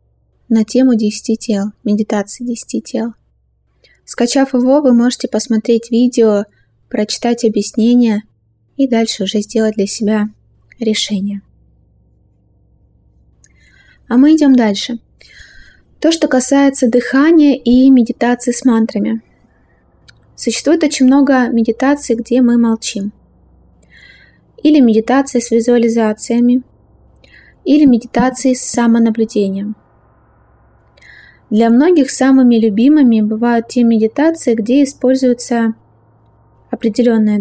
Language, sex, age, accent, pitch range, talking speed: Russian, female, 20-39, native, 220-255 Hz, 95 wpm